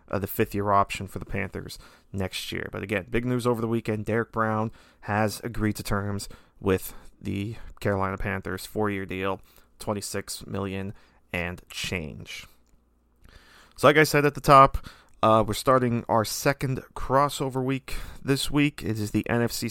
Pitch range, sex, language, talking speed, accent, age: 100-120 Hz, male, English, 155 wpm, American, 30-49